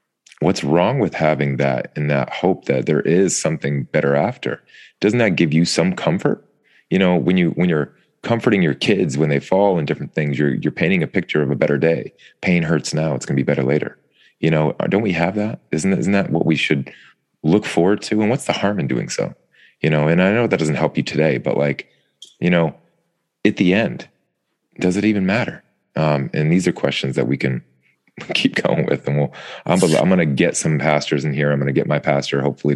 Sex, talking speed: male, 235 wpm